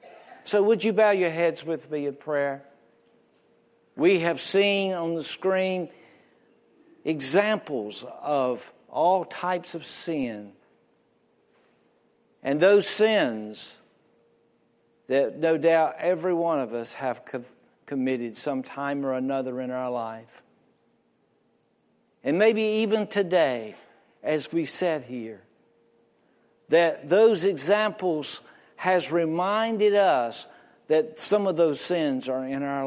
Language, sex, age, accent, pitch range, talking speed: English, male, 60-79, American, 135-185 Hz, 115 wpm